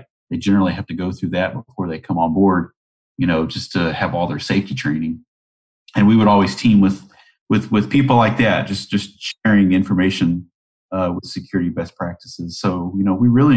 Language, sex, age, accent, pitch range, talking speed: English, male, 30-49, American, 90-110 Hz, 205 wpm